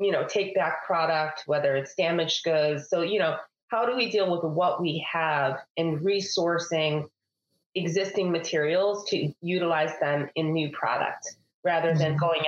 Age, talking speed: 30-49, 160 wpm